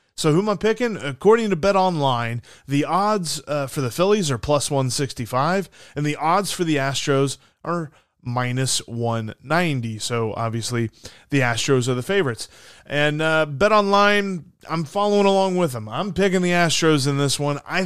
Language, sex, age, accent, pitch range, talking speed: English, male, 30-49, American, 125-165 Hz, 180 wpm